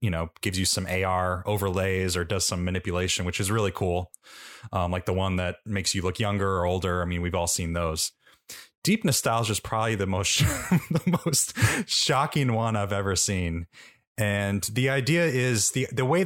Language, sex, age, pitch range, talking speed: English, male, 30-49, 95-115 Hz, 190 wpm